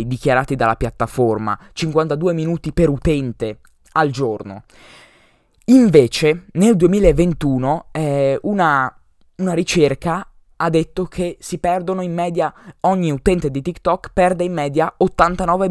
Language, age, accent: Italian, 20-39, native